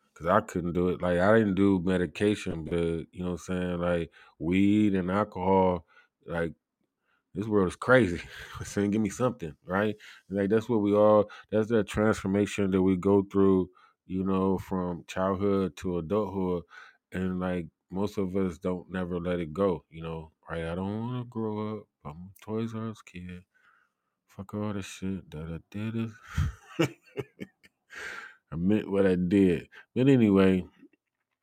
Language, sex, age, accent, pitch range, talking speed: English, male, 20-39, American, 85-100 Hz, 170 wpm